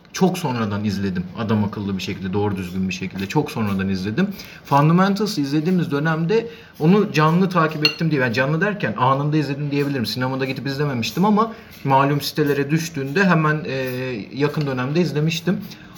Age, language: 40-59, Turkish